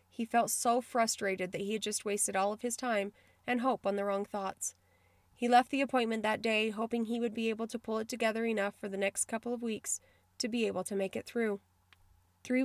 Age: 30-49